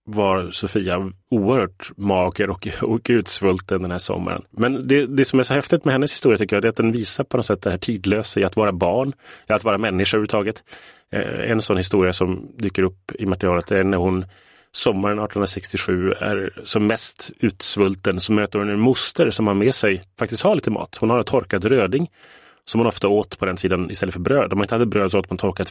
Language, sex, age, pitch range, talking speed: Swedish, male, 30-49, 95-115 Hz, 220 wpm